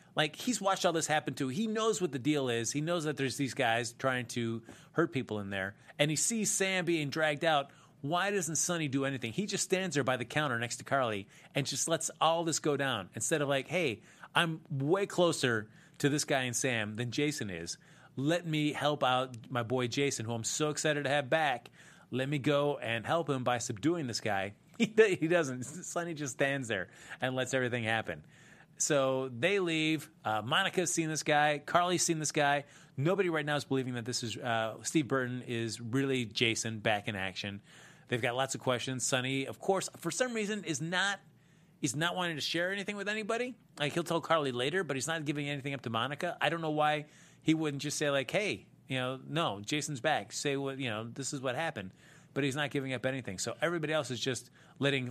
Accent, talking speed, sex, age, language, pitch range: American, 220 wpm, male, 30-49, English, 125-165 Hz